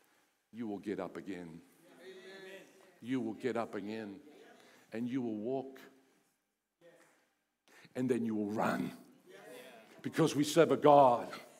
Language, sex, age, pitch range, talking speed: English, male, 50-69, 130-200 Hz, 125 wpm